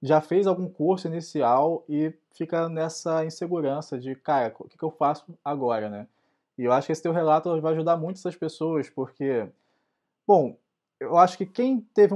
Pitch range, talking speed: 130-170 Hz, 180 wpm